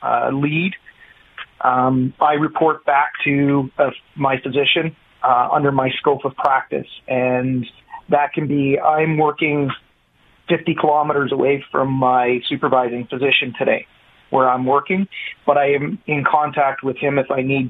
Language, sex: English, male